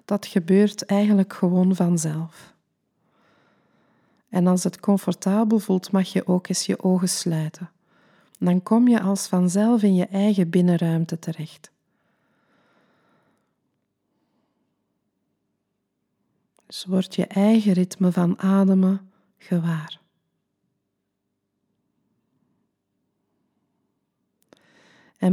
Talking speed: 85 wpm